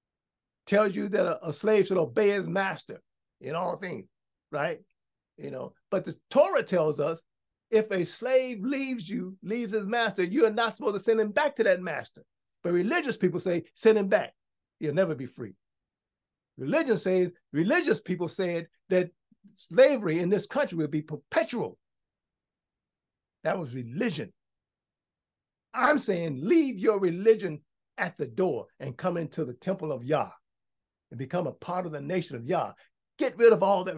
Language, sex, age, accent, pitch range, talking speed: English, male, 60-79, American, 155-235 Hz, 165 wpm